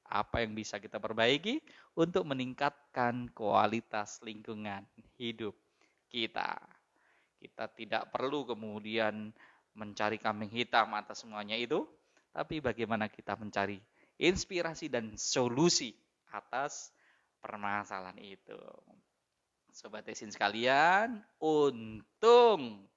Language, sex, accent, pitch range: Indonesian, male, native, 105-140 Hz